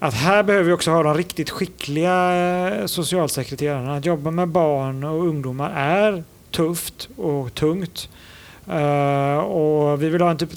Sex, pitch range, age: male, 145-180 Hz, 30-49